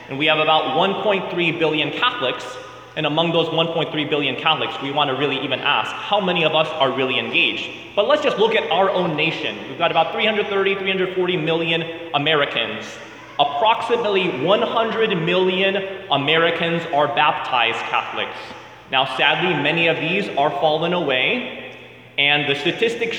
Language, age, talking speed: English, 20-39, 150 wpm